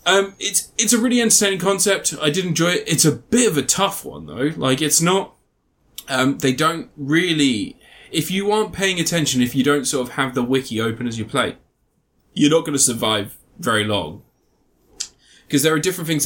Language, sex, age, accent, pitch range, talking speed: English, male, 20-39, British, 120-155 Hz, 200 wpm